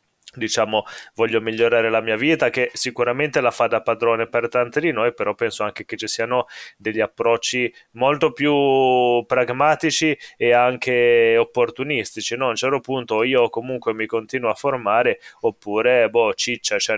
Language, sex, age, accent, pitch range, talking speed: Italian, male, 20-39, native, 110-130 Hz, 160 wpm